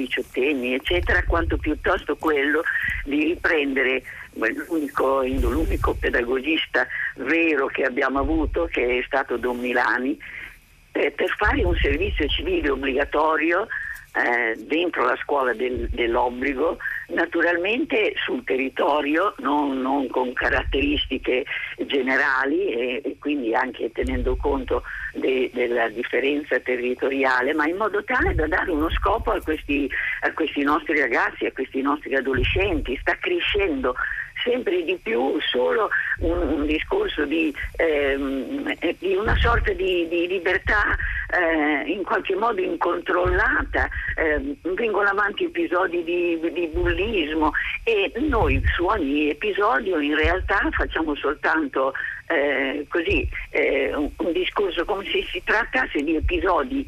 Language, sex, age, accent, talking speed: Italian, male, 50-69, native, 120 wpm